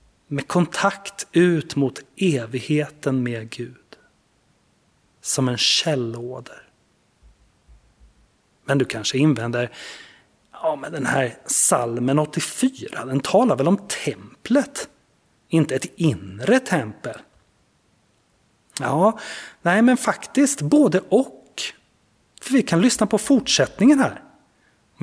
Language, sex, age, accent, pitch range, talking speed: Swedish, male, 30-49, native, 125-190 Hz, 105 wpm